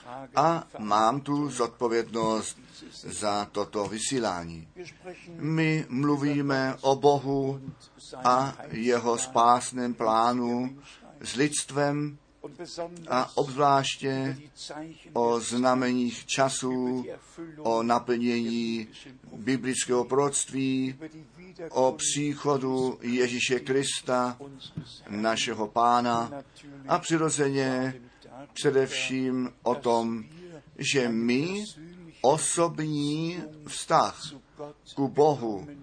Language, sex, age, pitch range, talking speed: Czech, male, 50-69, 120-145 Hz, 70 wpm